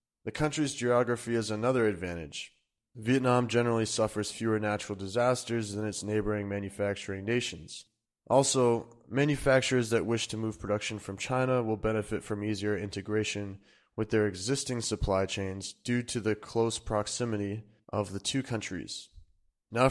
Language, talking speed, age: English, 140 wpm, 20-39